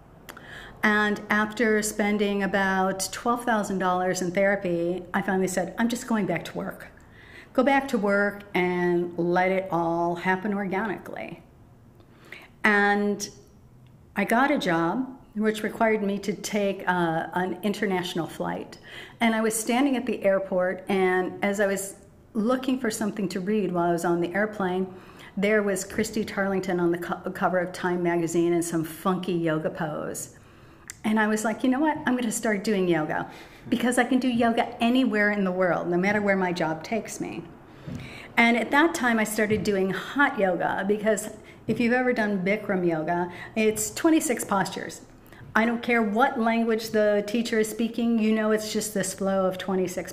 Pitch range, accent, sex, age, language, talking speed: 185-225 Hz, American, female, 50-69, English, 170 wpm